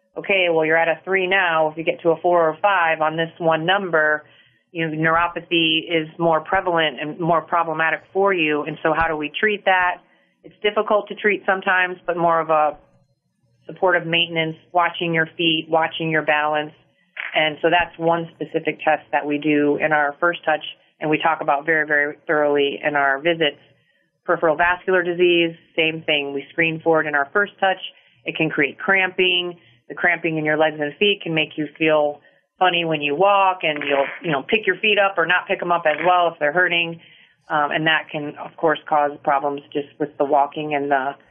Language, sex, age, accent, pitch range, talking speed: English, female, 30-49, American, 150-170 Hz, 205 wpm